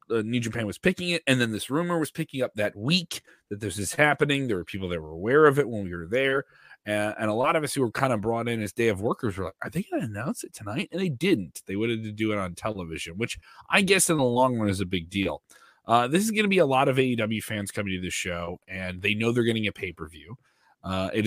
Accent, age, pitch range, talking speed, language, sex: American, 30-49, 100-130 Hz, 285 wpm, English, male